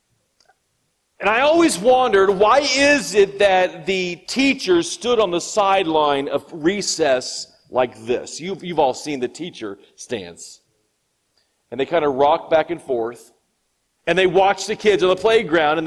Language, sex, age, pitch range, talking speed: English, male, 40-59, 165-240 Hz, 160 wpm